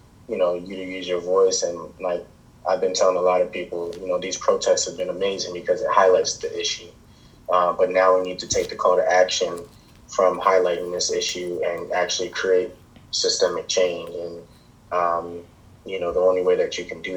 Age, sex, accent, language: 20-39, male, American, English